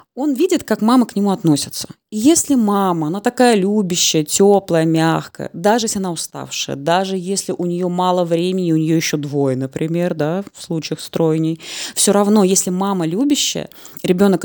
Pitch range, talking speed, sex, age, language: 160-205 Hz, 160 wpm, female, 20-39, Russian